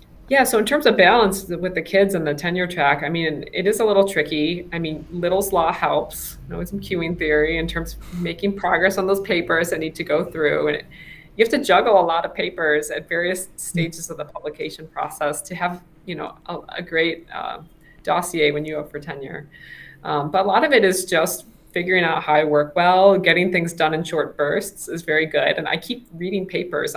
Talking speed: 225 wpm